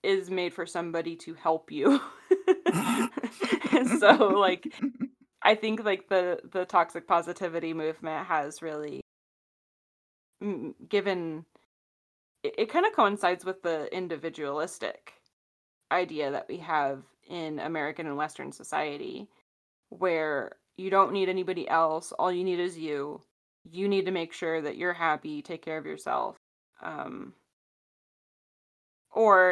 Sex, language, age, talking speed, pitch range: female, English, 20-39, 125 wpm, 160-190 Hz